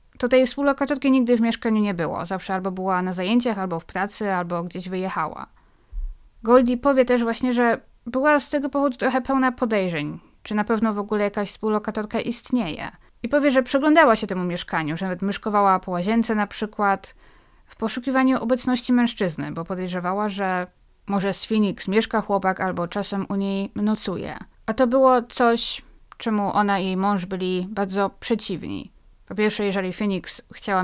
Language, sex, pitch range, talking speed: Polish, female, 185-230 Hz, 170 wpm